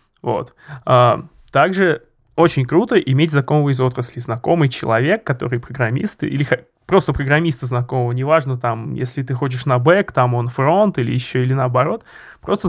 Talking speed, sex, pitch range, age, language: 145 wpm, male, 130-160 Hz, 20-39, Russian